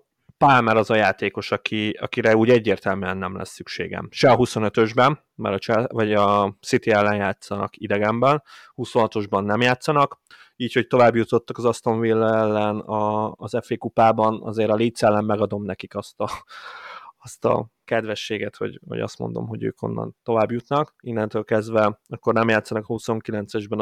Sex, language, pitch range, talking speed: male, Hungarian, 105-120 Hz, 150 wpm